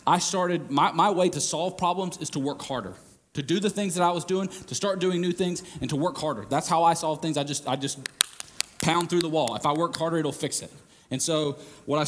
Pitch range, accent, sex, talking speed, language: 125-155 Hz, American, male, 265 wpm, English